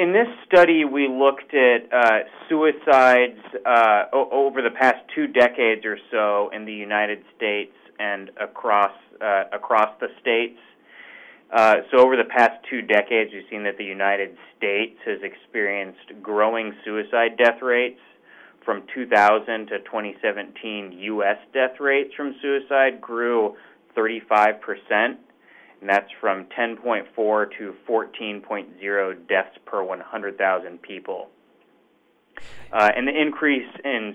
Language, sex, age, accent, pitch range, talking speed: English, male, 30-49, American, 100-130 Hz, 125 wpm